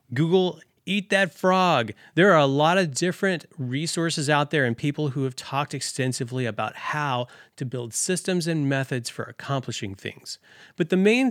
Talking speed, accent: 170 wpm, American